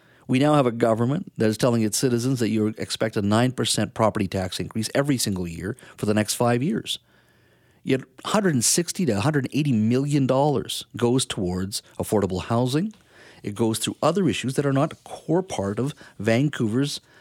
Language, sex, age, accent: English, male, 50-69, American